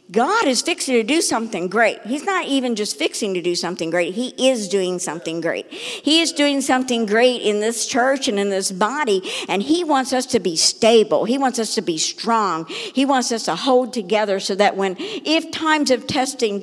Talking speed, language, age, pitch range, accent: 215 wpm, English, 60-79, 190-255 Hz, American